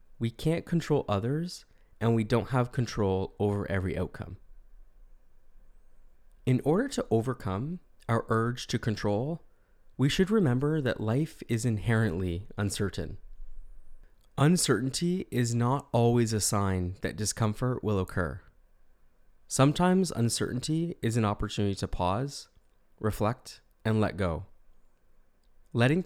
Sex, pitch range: male, 95-120 Hz